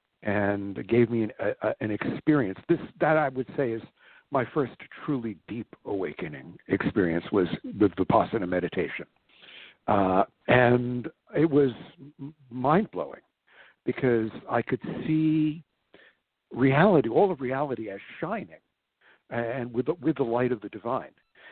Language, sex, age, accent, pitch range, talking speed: English, male, 60-79, American, 115-145 Hz, 135 wpm